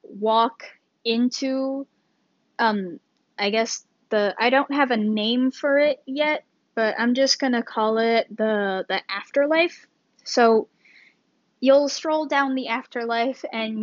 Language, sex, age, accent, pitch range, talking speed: English, female, 10-29, American, 225-290 Hz, 130 wpm